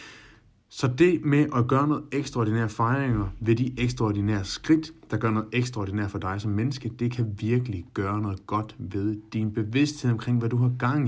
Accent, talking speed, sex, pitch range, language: native, 185 wpm, male, 105-125 Hz, Danish